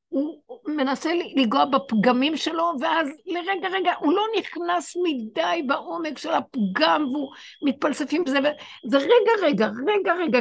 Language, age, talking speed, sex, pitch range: Hebrew, 60-79, 135 wpm, female, 225-315 Hz